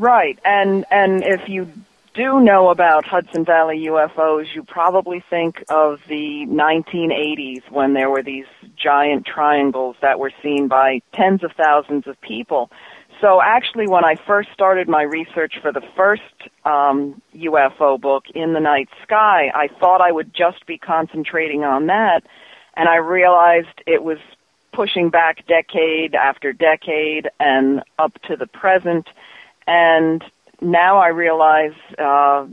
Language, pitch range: English, 145-175 Hz